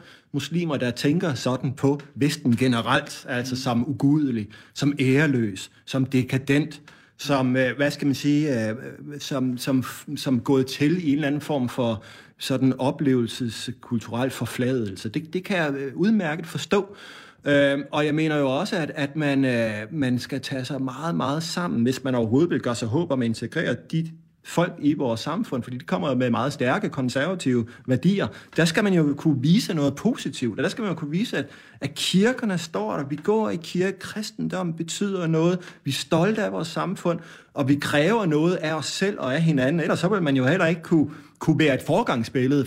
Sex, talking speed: male, 185 wpm